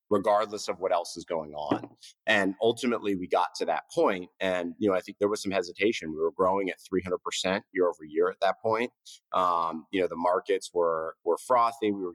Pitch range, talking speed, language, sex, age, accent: 85-130 Hz, 225 wpm, English, male, 30-49, American